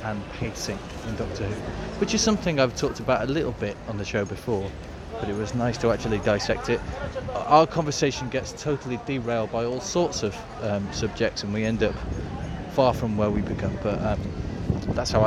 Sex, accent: male, British